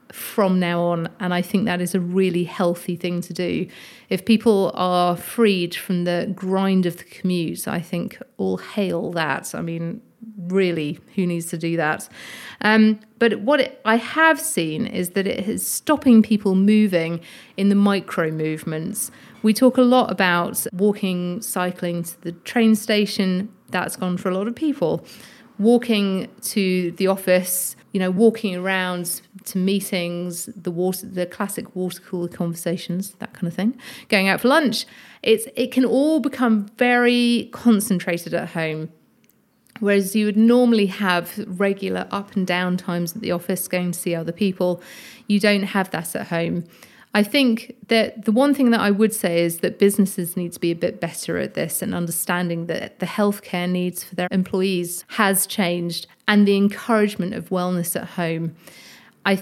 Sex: female